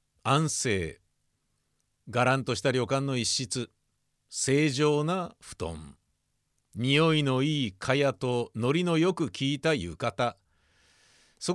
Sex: male